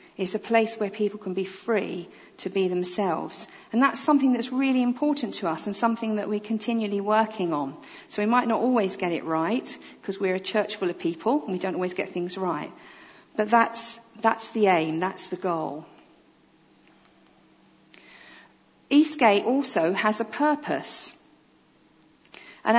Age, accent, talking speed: 50-69, British, 165 wpm